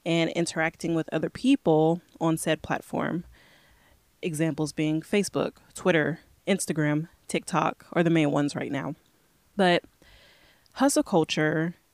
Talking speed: 115 wpm